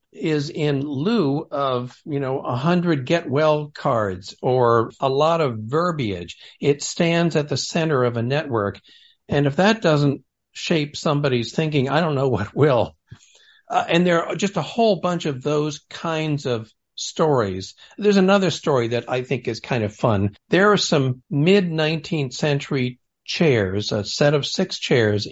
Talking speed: 165 wpm